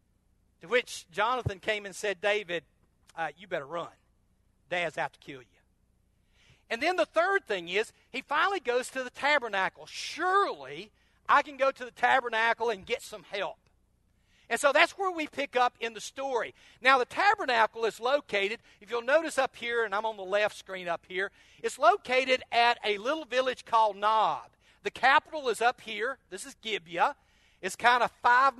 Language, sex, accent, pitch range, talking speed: English, male, American, 195-260 Hz, 185 wpm